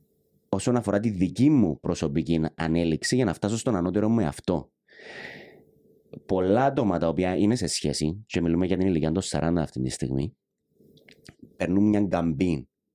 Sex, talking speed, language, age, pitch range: male, 160 wpm, Greek, 30-49, 80-100 Hz